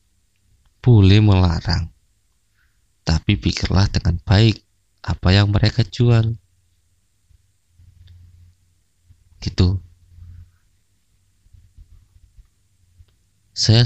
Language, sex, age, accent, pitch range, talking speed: Indonesian, male, 20-39, native, 85-105 Hz, 50 wpm